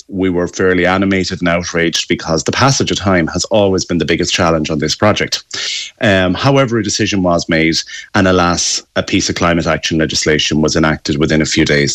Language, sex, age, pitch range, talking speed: English, male, 30-49, 85-100 Hz, 200 wpm